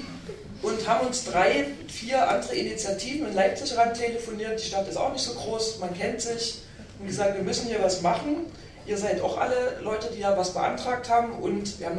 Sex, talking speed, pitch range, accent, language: female, 205 wpm, 180-220 Hz, German, German